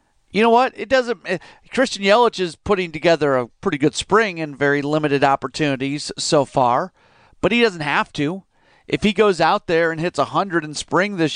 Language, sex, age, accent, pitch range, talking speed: English, male, 40-59, American, 145-190 Hz, 195 wpm